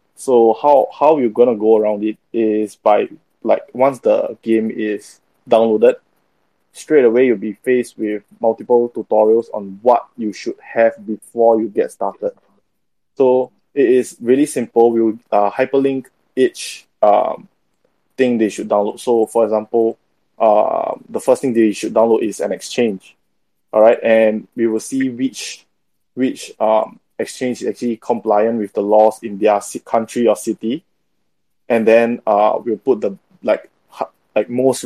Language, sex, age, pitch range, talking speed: English, male, 20-39, 110-120 Hz, 160 wpm